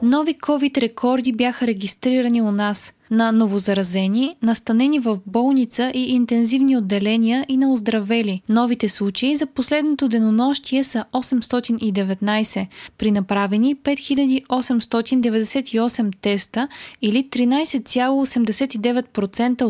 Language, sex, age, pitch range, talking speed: Bulgarian, female, 20-39, 210-255 Hz, 90 wpm